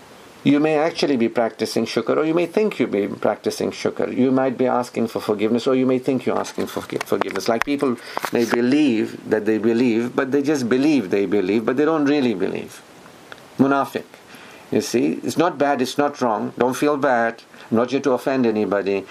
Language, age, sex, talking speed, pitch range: English, 50-69, male, 200 wpm, 110-135 Hz